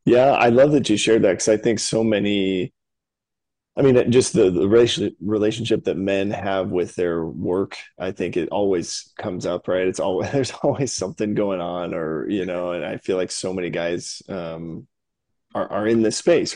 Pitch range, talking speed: 85-110 Hz, 200 wpm